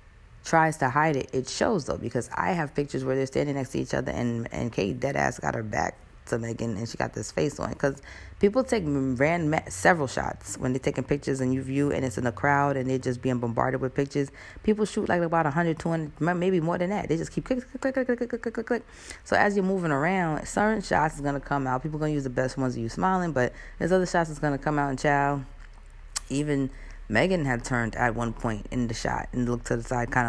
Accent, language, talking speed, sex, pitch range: American, English, 255 wpm, female, 120-155 Hz